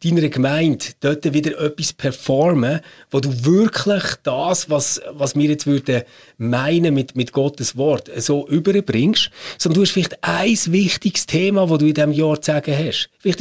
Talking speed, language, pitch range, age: 165 wpm, German, 140-170 Hz, 30-49